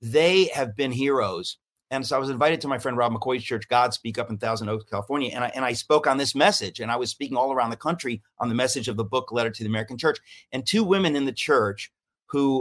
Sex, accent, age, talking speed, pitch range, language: male, American, 40-59, 265 wpm, 110-135 Hz, English